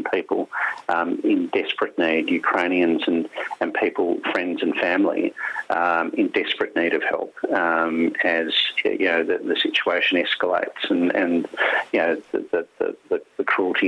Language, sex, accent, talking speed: English, male, Australian, 150 wpm